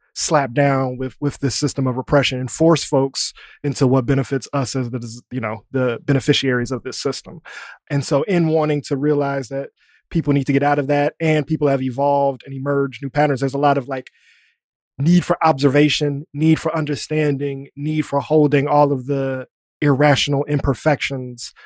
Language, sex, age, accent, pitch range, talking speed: English, male, 20-39, American, 130-145 Hz, 180 wpm